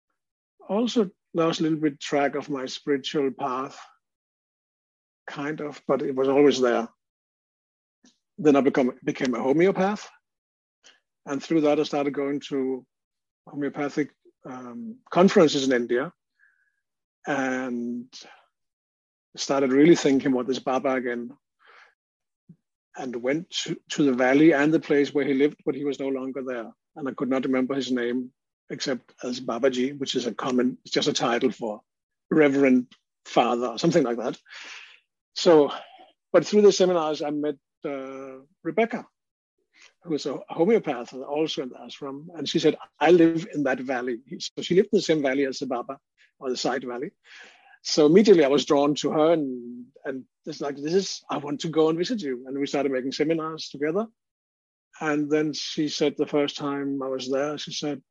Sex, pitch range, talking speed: male, 130-160 Hz, 165 wpm